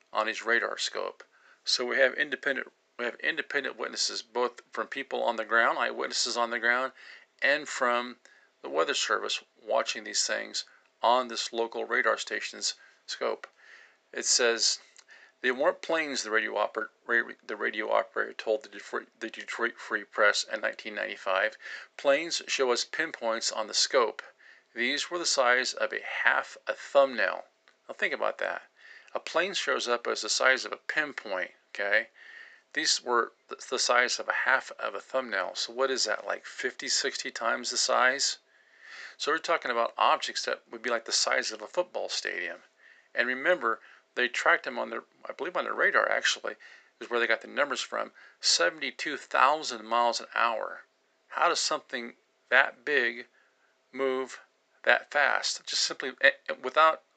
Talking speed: 165 wpm